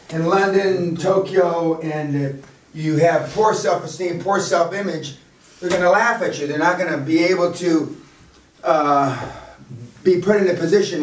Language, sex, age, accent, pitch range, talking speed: English, male, 40-59, American, 150-175 Hz, 160 wpm